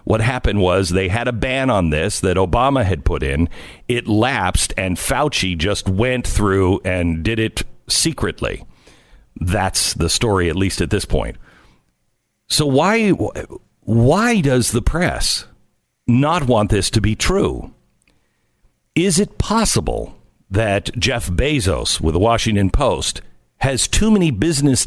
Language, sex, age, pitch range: English, male, 50-69, 95-135 Hz